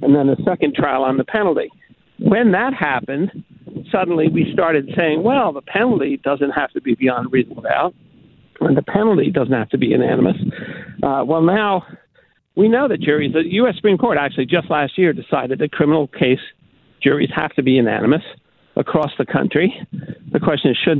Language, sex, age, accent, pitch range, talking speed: English, male, 50-69, American, 145-190 Hz, 185 wpm